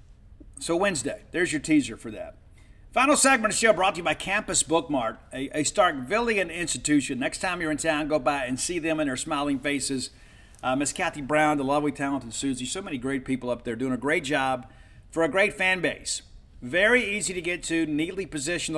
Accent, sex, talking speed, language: American, male, 210 wpm, English